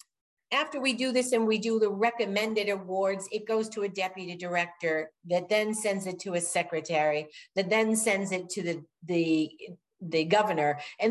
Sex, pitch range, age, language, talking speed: female, 170-225 Hz, 50-69, English, 175 wpm